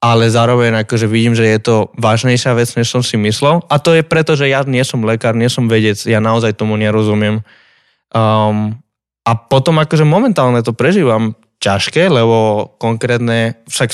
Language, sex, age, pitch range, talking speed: Slovak, male, 20-39, 110-135 Hz, 170 wpm